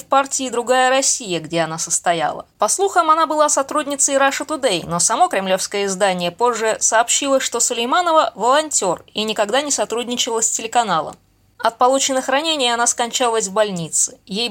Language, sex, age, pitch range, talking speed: Russian, female, 20-39, 215-270 Hz, 155 wpm